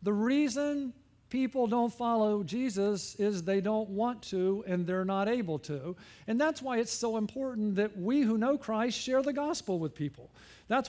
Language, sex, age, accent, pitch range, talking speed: English, male, 50-69, American, 160-215 Hz, 180 wpm